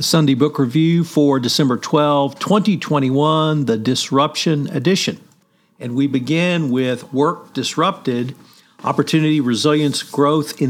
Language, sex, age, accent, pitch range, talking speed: English, male, 50-69, American, 135-170 Hz, 110 wpm